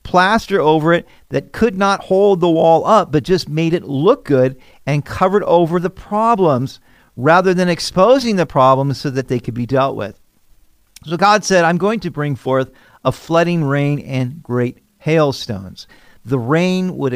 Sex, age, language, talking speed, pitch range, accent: male, 50-69, English, 175 wpm, 125-175 Hz, American